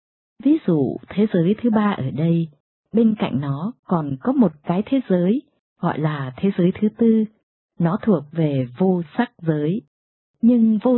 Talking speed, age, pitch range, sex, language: 170 wpm, 20-39, 155-220 Hz, female, Vietnamese